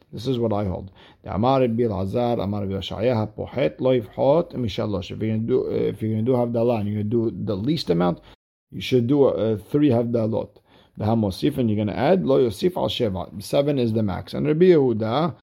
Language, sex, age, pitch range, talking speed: English, male, 50-69, 100-135 Hz, 220 wpm